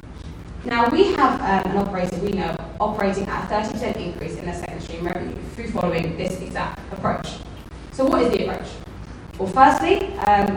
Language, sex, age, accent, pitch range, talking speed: English, female, 20-39, British, 175-245 Hz, 175 wpm